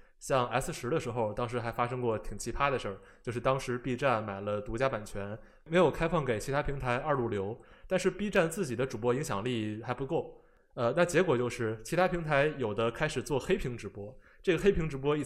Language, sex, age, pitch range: Chinese, male, 20-39, 115-150 Hz